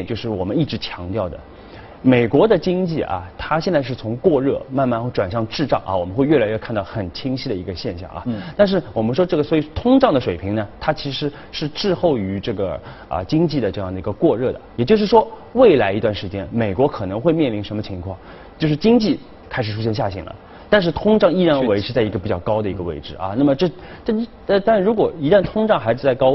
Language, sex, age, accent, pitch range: Chinese, male, 30-49, native, 95-145 Hz